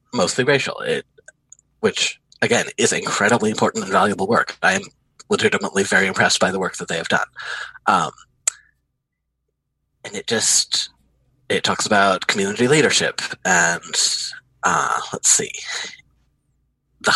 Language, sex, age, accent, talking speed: English, male, 30-49, American, 125 wpm